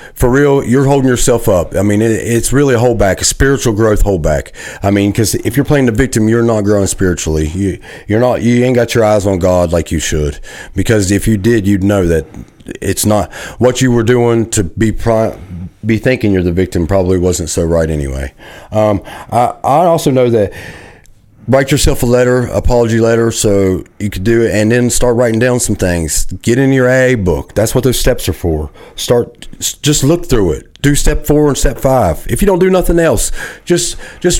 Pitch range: 95-120 Hz